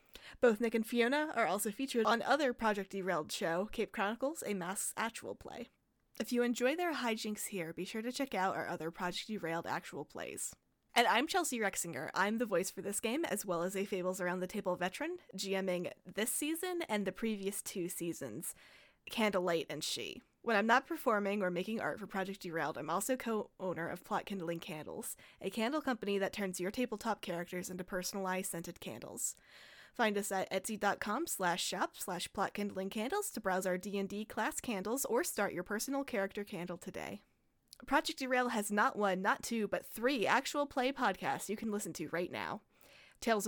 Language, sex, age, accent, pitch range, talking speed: English, female, 10-29, American, 185-235 Hz, 185 wpm